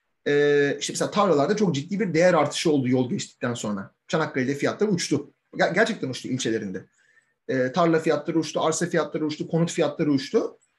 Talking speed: 165 wpm